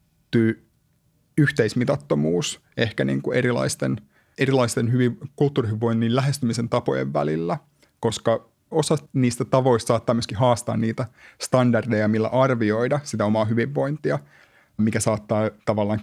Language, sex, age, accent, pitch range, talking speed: Finnish, male, 30-49, native, 110-125 Hz, 95 wpm